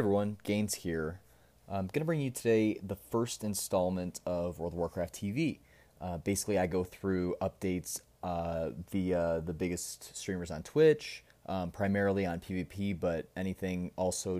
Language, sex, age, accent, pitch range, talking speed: English, male, 20-39, American, 90-105 Hz, 155 wpm